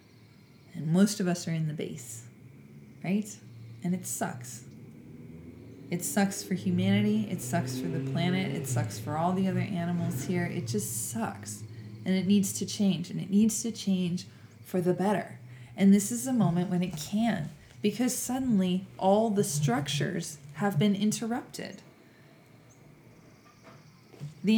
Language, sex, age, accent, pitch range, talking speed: English, female, 20-39, American, 160-210 Hz, 150 wpm